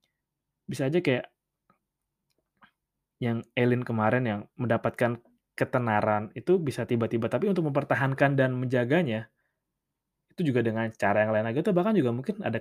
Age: 20-39